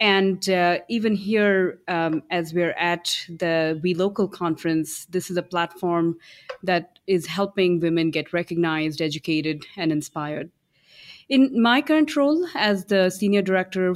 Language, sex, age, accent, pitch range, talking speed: English, female, 30-49, Indian, 165-200 Hz, 140 wpm